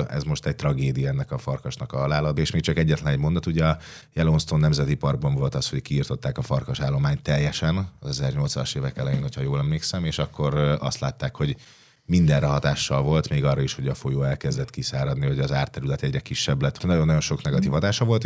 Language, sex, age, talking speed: Hungarian, male, 30-49, 205 wpm